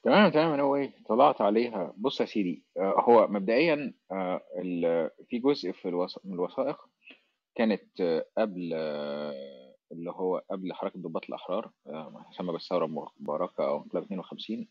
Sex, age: male, 30-49